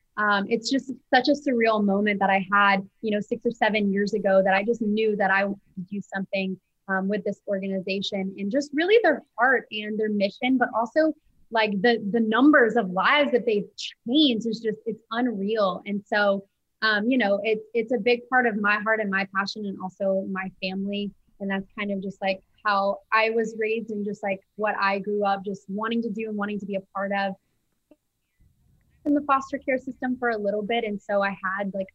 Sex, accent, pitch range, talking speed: female, American, 195-220 Hz, 215 wpm